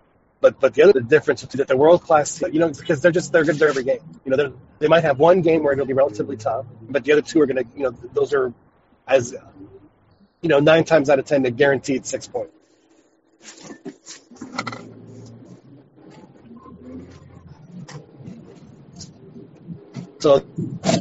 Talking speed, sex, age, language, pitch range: 165 wpm, male, 40-59, English, 125-160 Hz